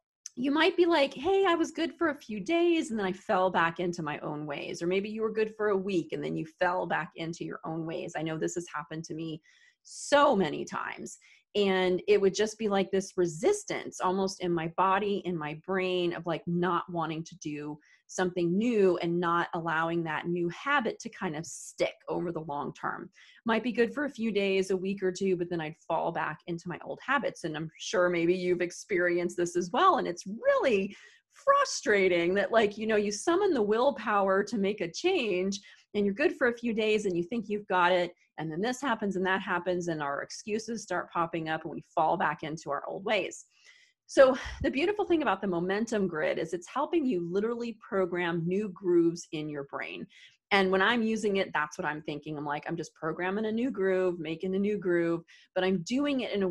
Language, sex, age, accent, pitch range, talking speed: English, female, 30-49, American, 170-230 Hz, 225 wpm